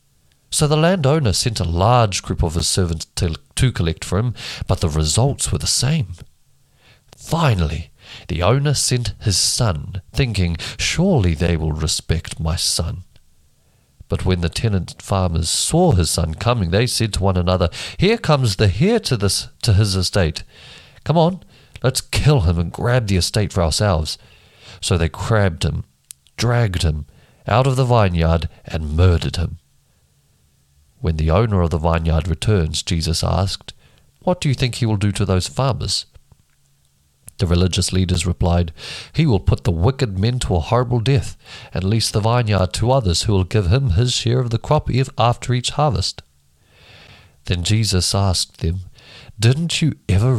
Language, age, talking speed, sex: English, 40-59, 165 wpm, male